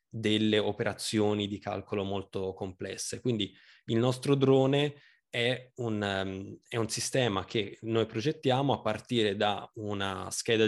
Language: Italian